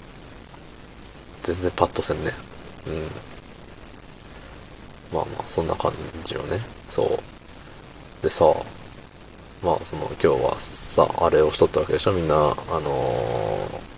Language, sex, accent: Japanese, male, native